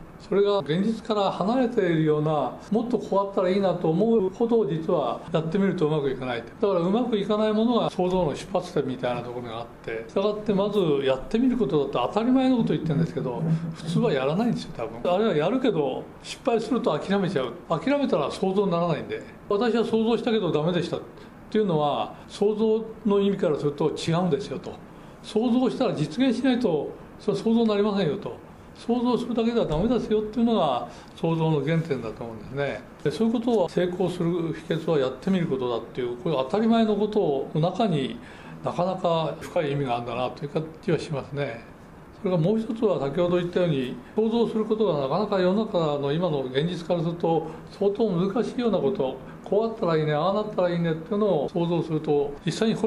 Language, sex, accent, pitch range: Japanese, male, native, 155-220 Hz